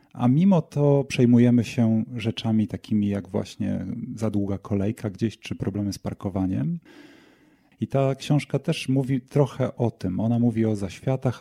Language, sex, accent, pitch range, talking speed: Polish, male, native, 105-130 Hz, 155 wpm